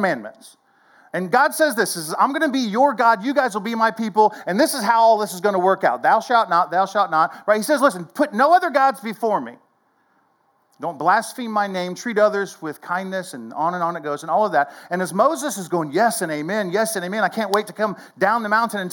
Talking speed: 265 wpm